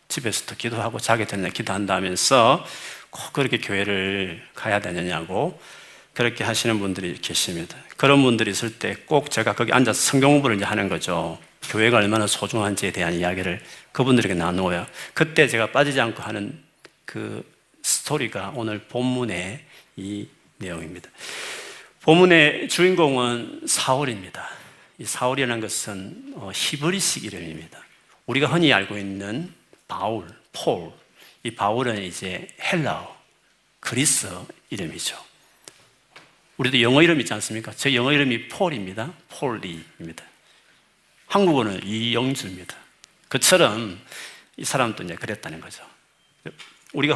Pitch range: 100-135 Hz